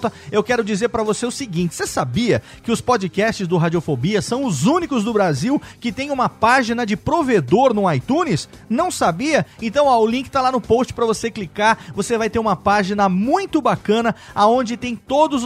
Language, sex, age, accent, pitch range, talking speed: Portuguese, male, 30-49, Brazilian, 195-245 Hz, 190 wpm